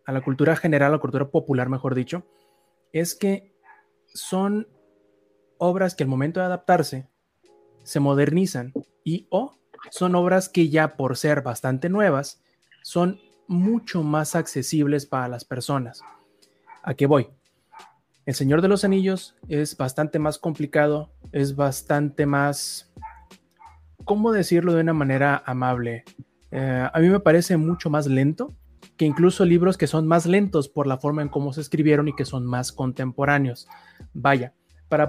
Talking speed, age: 150 wpm, 20-39